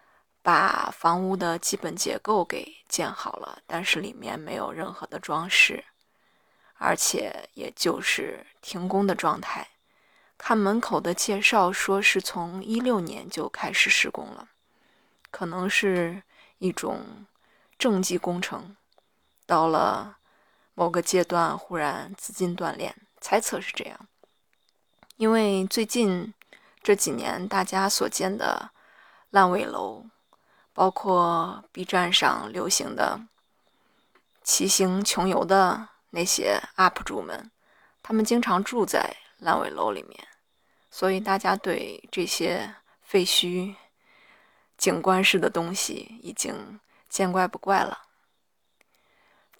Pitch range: 180-210 Hz